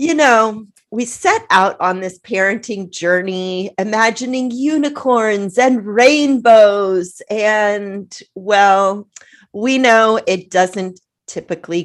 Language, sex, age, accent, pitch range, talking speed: English, female, 40-59, American, 170-215 Hz, 100 wpm